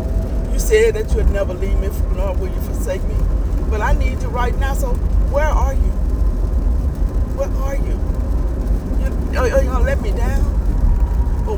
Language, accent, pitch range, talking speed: English, American, 75-85 Hz, 180 wpm